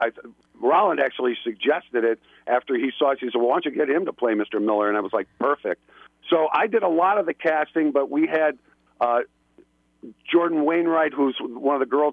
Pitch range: 120-155 Hz